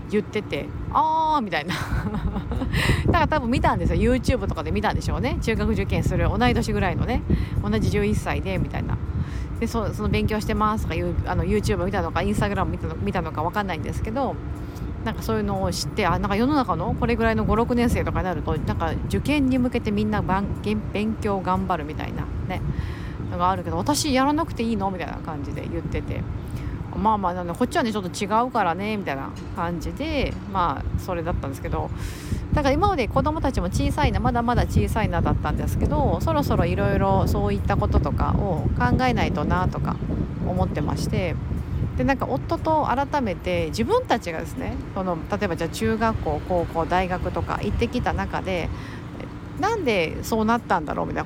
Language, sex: Japanese, female